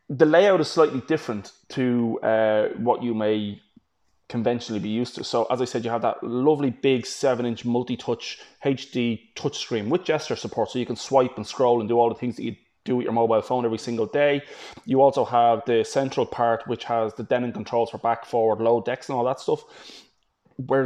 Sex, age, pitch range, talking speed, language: male, 20-39, 115-140 Hz, 205 wpm, English